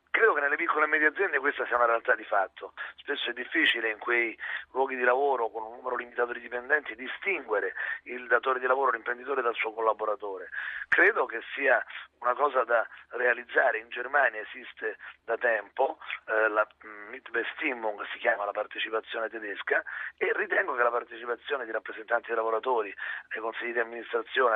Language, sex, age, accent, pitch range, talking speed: Italian, male, 30-49, native, 115-130 Hz, 165 wpm